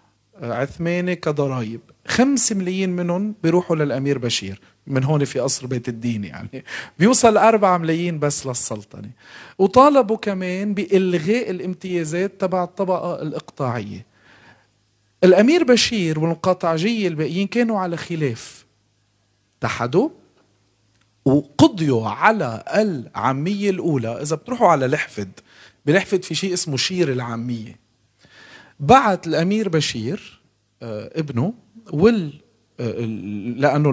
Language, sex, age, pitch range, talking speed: Arabic, male, 40-59, 130-195 Hz, 95 wpm